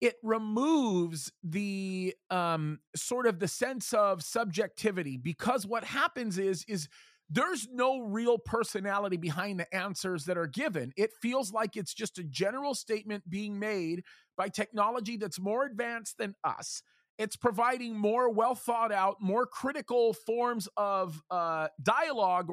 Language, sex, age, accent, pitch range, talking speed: English, male, 40-59, American, 190-245 Hz, 140 wpm